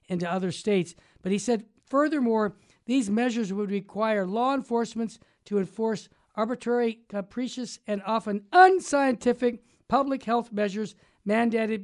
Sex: male